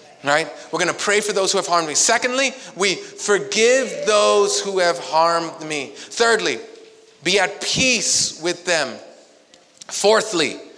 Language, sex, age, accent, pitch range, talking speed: English, male, 30-49, American, 160-235 Hz, 140 wpm